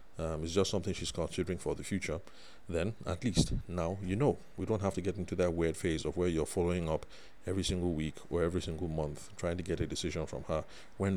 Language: English